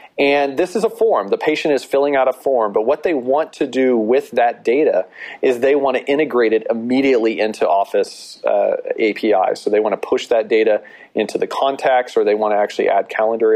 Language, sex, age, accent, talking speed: English, male, 40-59, American, 215 wpm